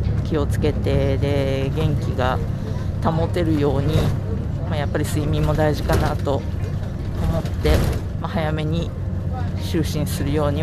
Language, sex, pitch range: Japanese, female, 90-105 Hz